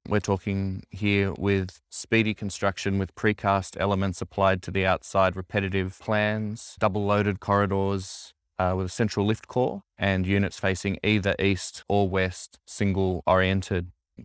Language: English